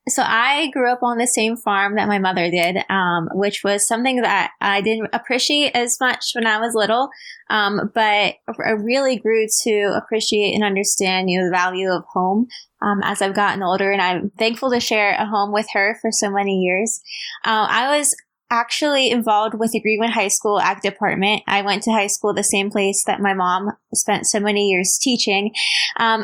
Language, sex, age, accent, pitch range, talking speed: English, female, 20-39, American, 205-245 Hz, 200 wpm